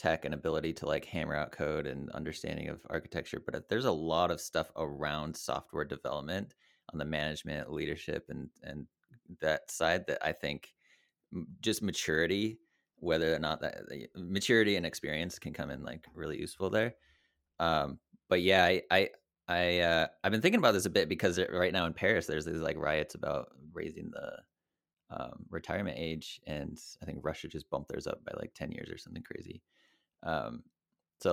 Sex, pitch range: male, 80-90 Hz